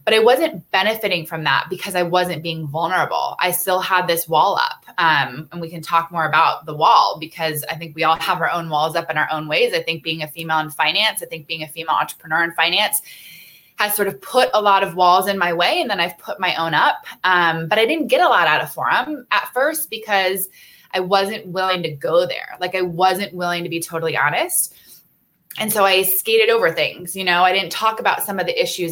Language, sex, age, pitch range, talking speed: English, female, 20-39, 165-230 Hz, 240 wpm